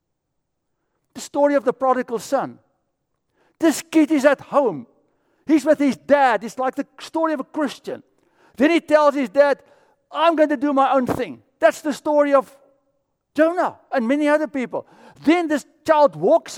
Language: English